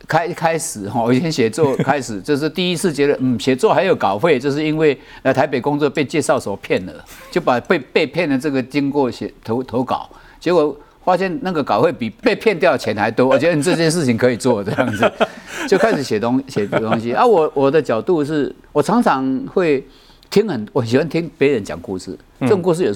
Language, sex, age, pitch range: Chinese, male, 50-69, 120-160 Hz